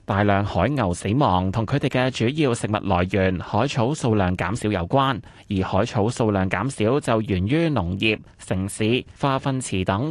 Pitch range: 100-135 Hz